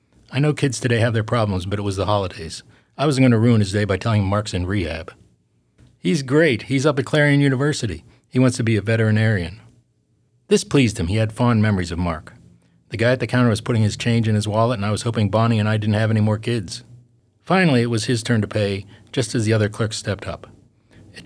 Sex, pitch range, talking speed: male, 100-120 Hz, 240 wpm